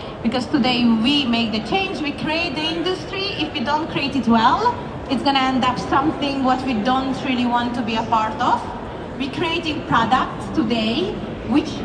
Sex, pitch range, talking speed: female, 245-295 Hz, 180 wpm